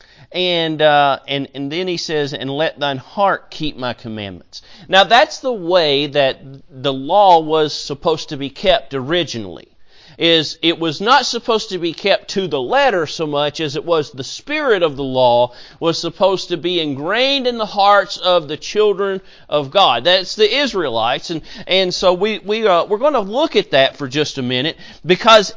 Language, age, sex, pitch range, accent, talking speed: English, 40-59, male, 150-210 Hz, American, 190 wpm